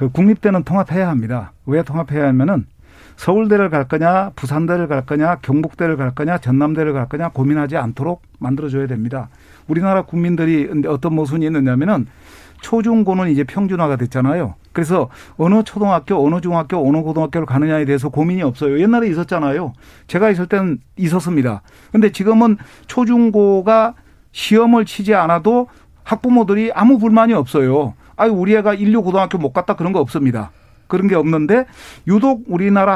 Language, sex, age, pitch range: Korean, male, 40-59, 145-200 Hz